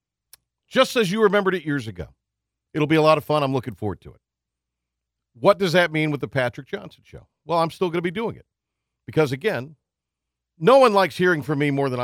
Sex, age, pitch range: male, 50-69, 95-150 Hz